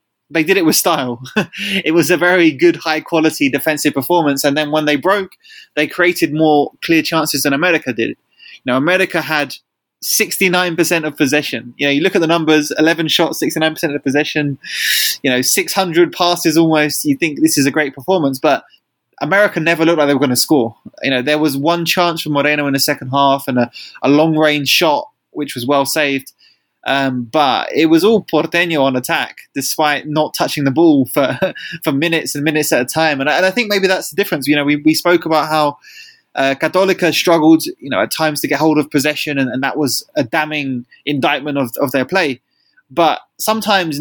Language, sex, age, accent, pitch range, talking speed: English, male, 20-39, British, 140-170 Hz, 210 wpm